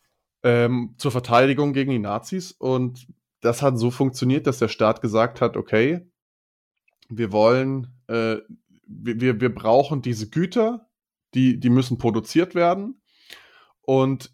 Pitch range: 115-140 Hz